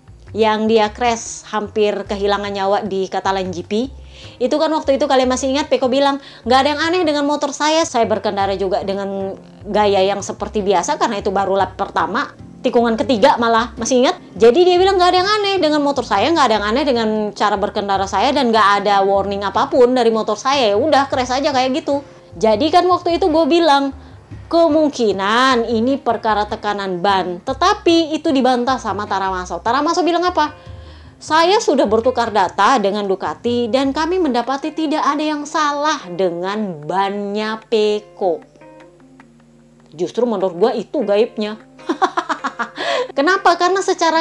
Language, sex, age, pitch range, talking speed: Indonesian, female, 20-39, 205-295 Hz, 155 wpm